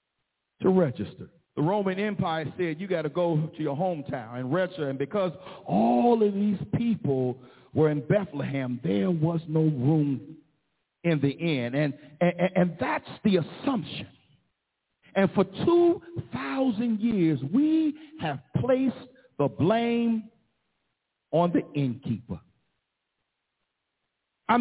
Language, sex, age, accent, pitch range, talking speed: English, male, 50-69, American, 170-260 Hz, 120 wpm